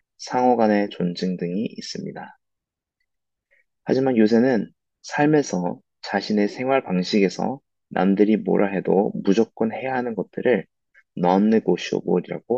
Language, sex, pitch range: Korean, male, 95-125 Hz